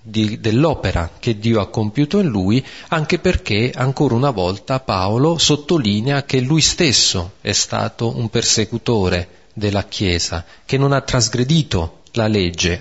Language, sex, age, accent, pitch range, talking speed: Italian, male, 40-59, native, 100-140 Hz, 135 wpm